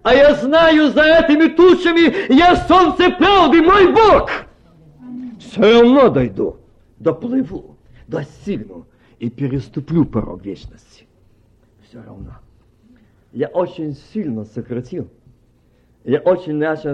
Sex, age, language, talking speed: male, 50-69, Russian, 105 wpm